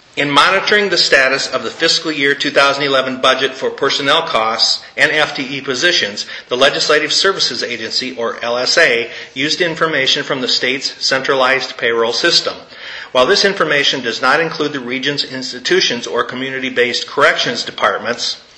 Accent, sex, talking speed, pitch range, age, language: American, male, 140 wpm, 125-160 Hz, 40-59, English